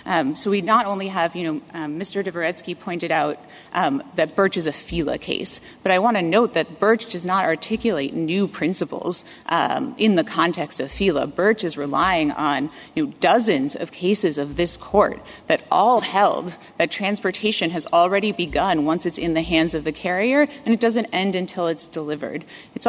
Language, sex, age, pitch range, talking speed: English, female, 30-49, 165-215 Hz, 195 wpm